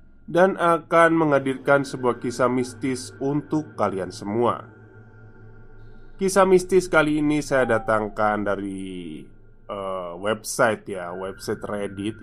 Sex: male